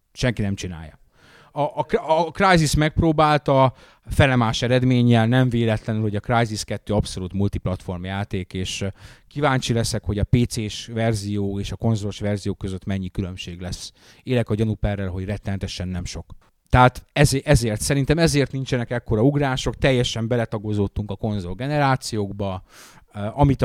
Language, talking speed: Hungarian, 135 wpm